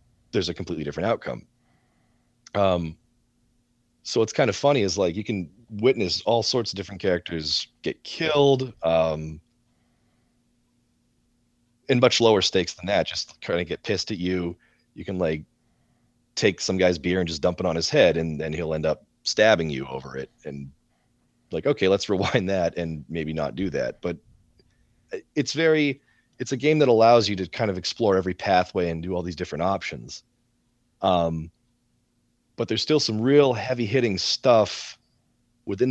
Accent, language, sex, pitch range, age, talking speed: American, English, male, 85-120 Hz, 30-49, 170 wpm